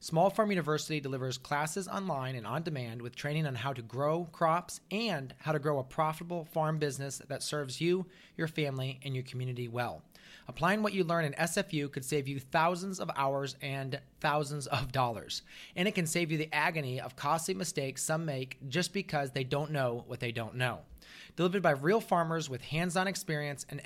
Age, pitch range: 30-49, 135-170 Hz